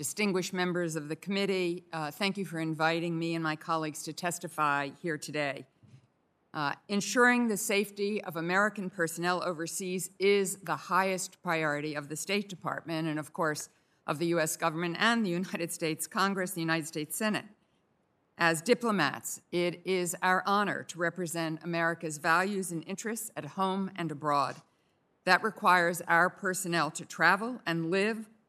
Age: 50-69